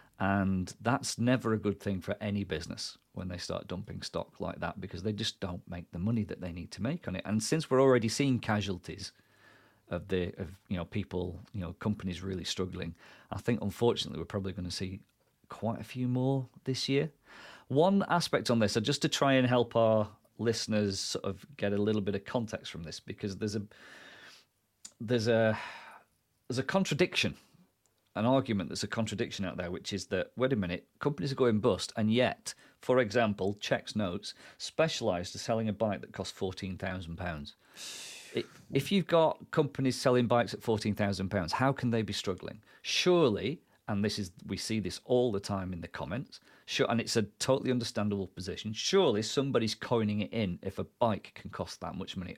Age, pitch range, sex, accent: 40-59, 95-125 Hz, male, British